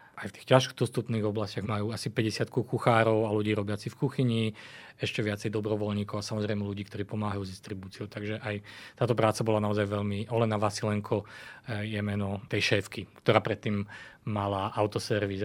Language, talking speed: Slovak, 160 wpm